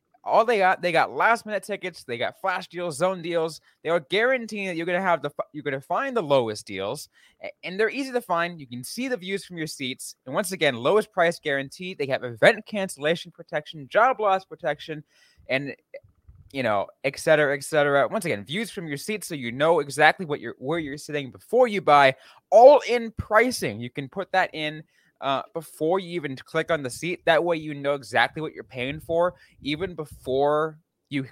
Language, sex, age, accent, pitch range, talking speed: English, male, 20-39, American, 135-180 Hz, 205 wpm